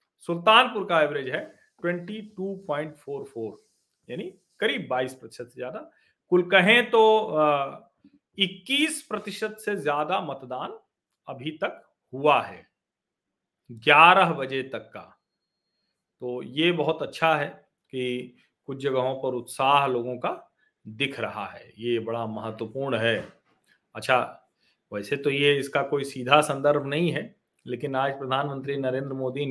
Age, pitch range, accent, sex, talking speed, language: 40-59, 120-150 Hz, native, male, 130 wpm, Hindi